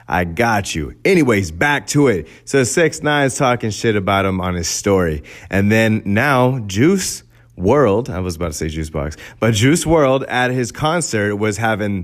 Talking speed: 180 wpm